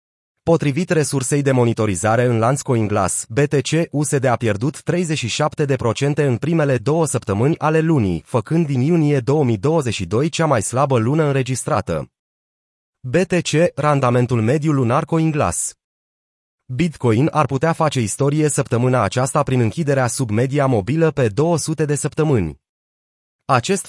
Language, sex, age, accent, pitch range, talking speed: Romanian, male, 30-49, native, 120-155 Hz, 125 wpm